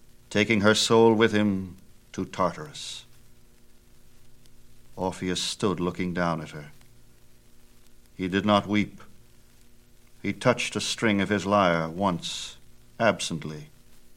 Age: 60-79